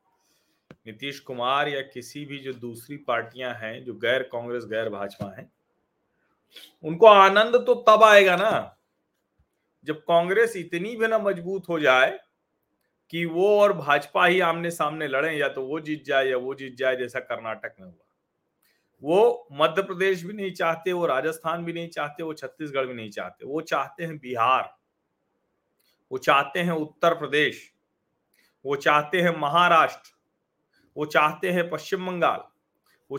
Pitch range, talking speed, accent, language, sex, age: 150-195 Hz, 155 wpm, native, Hindi, male, 40-59